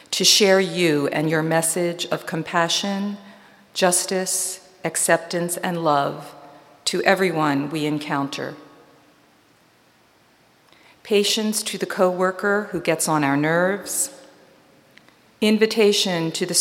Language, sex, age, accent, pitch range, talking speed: English, female, 50-69, American, 155-185 Hz, 100 wpm